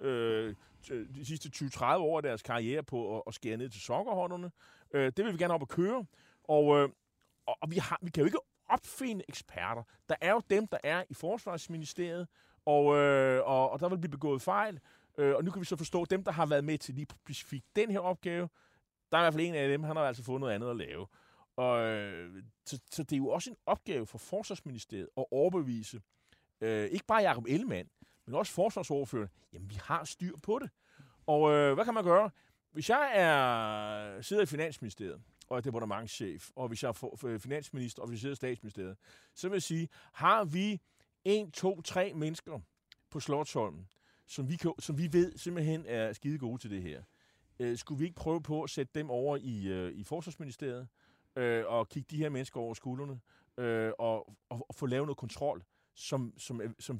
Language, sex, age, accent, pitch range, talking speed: Danish, male, 30-49, native, 115-165 Hz, 200 wpm